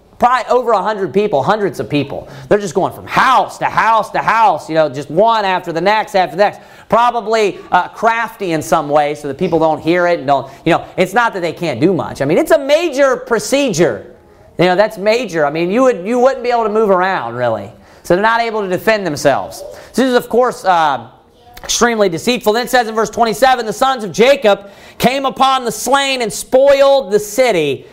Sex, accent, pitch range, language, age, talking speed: male, American, 170-235 Hz, English, 40-59, 225 wpm